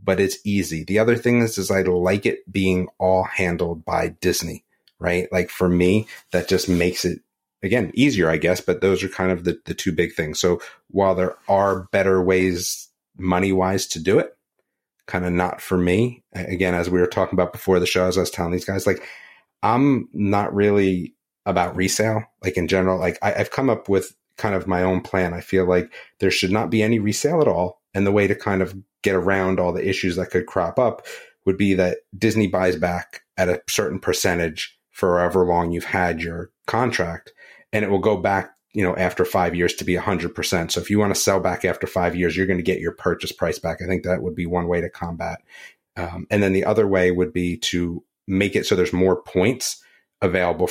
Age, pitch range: 30-49, 90-95 Hz